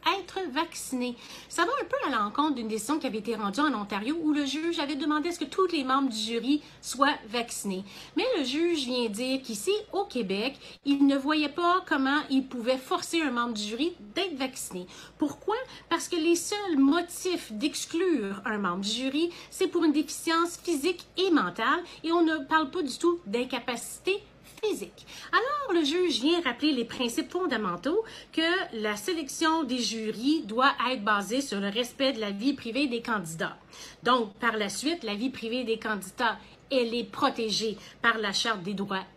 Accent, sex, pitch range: Canadian, female, 230-335 Hz